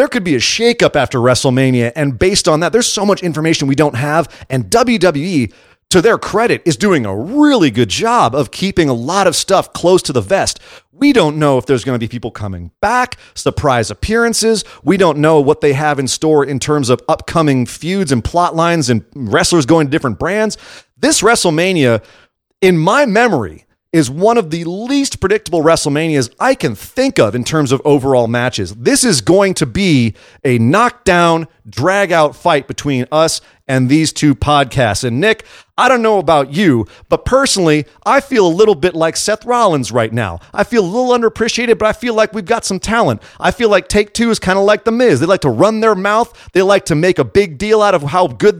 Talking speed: 210 wpm